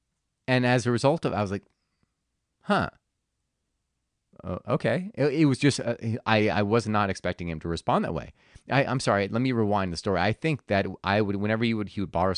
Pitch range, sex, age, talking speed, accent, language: 95-125 Hz, male, 30-49, 220 wpm, American, English